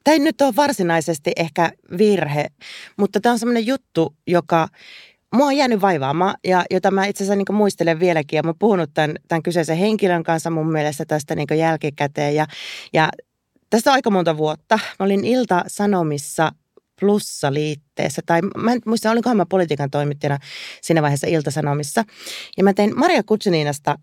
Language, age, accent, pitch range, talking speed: Finnish, 30-49, native, 150-200 Hz, 155 wpm